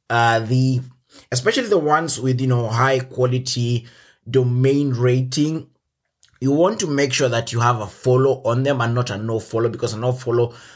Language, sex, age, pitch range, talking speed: English, male, 20-39, 115-135 Hz, 185 wpm